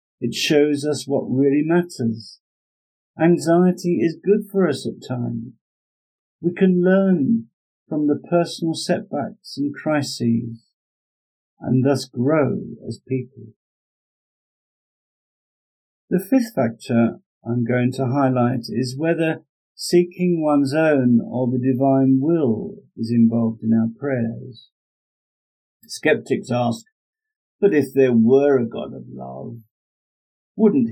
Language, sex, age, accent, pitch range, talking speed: English, male, 50-69, British, 115-160 Hz, 115 wpm